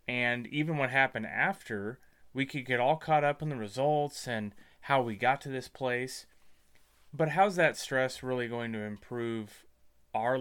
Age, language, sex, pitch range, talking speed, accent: 30-49, English, male, 110-150 Hz, 175 wpm, American